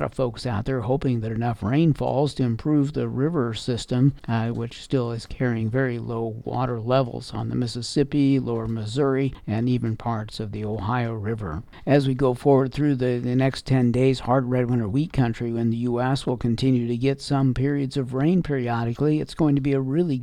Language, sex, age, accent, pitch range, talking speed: English, male, 50-69, American, 120-140 Hz, 200 wpm